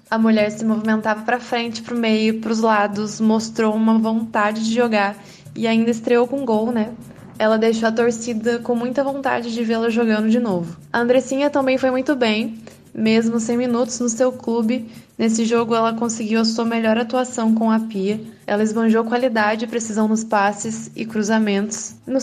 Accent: Brazilian